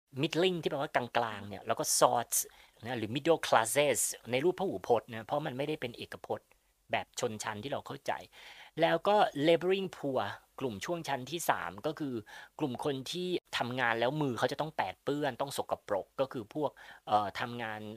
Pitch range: 120-170 Hz